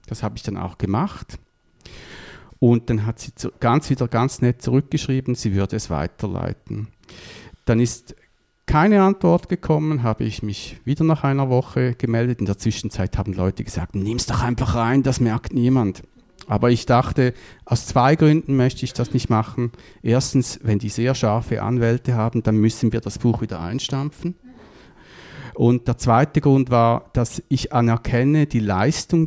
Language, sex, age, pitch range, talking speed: English, male, 50-69, 110-135 Hz, 170 wpm